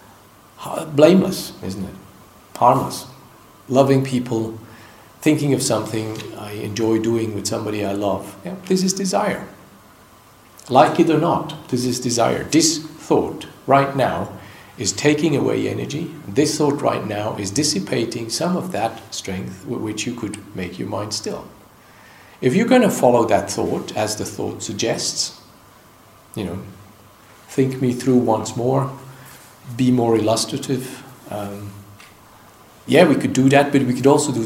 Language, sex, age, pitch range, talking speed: English, male, 50-69, 100-135 Hz, 145 wpm